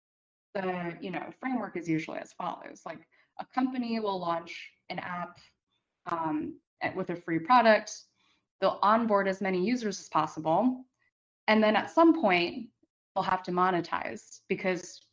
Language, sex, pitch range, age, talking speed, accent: English, female, 170-210 Hz, 20-39, 140 wpm, American